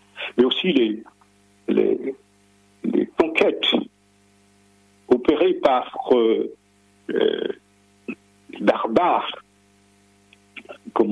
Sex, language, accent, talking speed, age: male, French, French, 65 wpm, 60-79